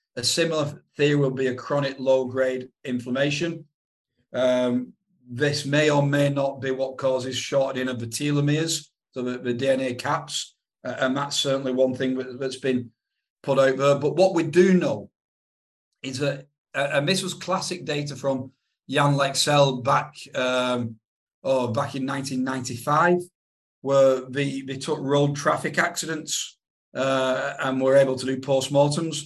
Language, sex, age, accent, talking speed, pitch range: English, male, 40-59, British, 150 wpm, 130-150 Hz